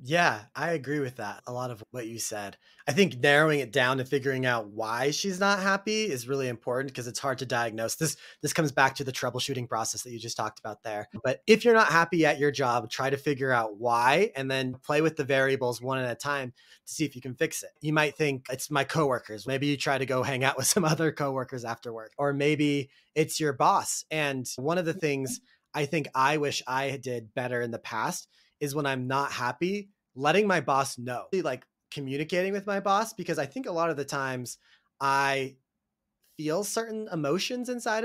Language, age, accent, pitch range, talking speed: English, 30-49, American, 125-155 Hz, 225 wpm